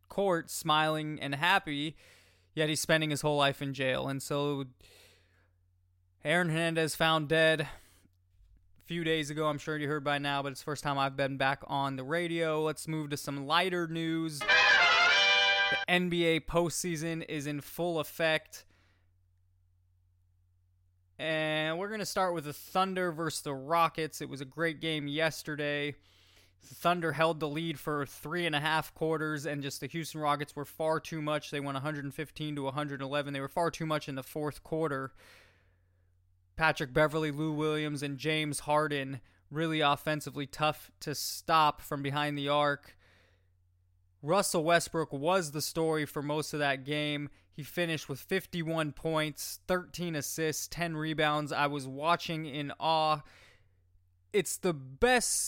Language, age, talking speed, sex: English, 20-39, 155 wpm, male